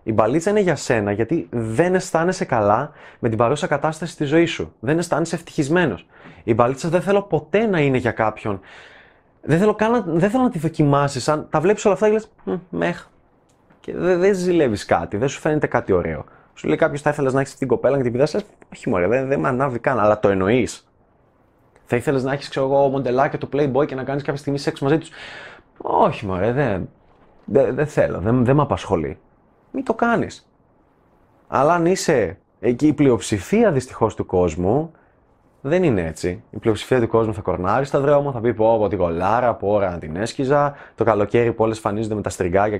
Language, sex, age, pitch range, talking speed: Greek, male, 20-39, 110-155 Hz, 200 wpm